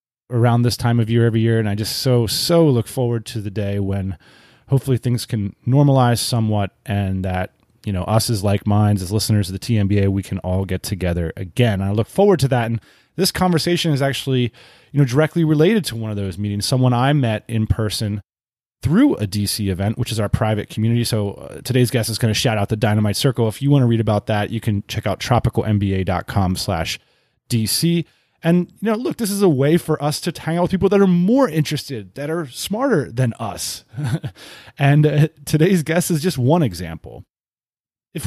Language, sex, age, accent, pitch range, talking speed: English, male, 30-49, American, 105-155 Hz, 215 wpm